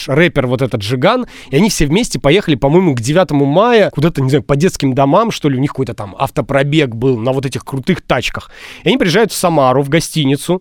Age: 30-49